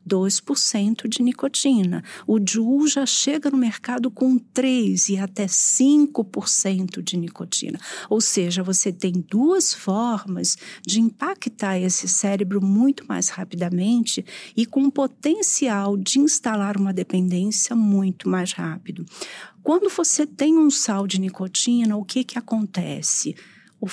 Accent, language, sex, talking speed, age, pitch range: Brazilian, Portuguese, female, 125 wpm, 50-69, 195-260 Hz